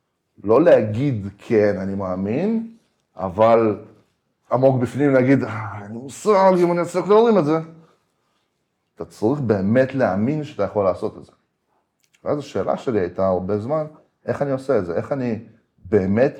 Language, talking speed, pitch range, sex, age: Hebrew, 150 wpm, 100-135 Hz, male, 30-49